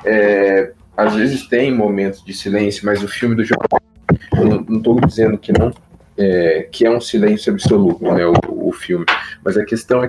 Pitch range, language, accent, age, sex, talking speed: 105-140 Hz, Portuguese, Brazilian, 20-39, male, 190 wpm